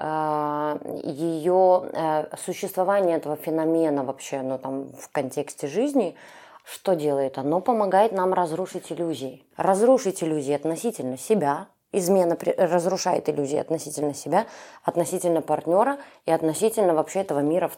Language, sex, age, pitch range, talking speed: Russian, female, 20-39, 150-180 Hz, 120 wpm